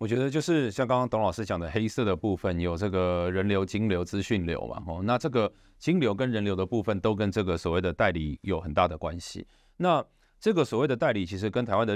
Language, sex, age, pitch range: Chinese, male, 30-49, 90-115 Hz